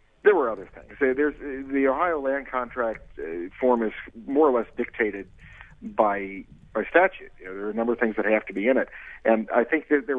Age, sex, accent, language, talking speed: 50-69, male, American, English, 220 wpm